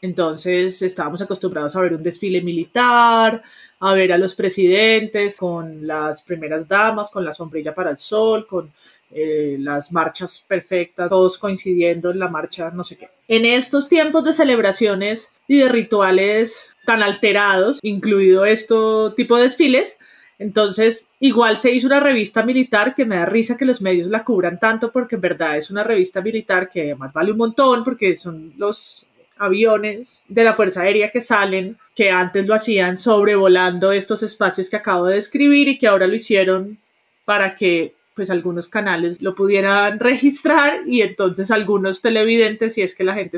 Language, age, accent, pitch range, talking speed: Spanish, 30-49, Colombian, 185-230 Hz, 170 wpm